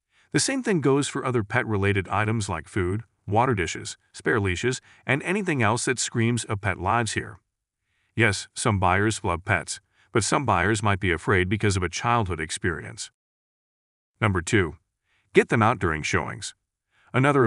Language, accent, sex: English, American, male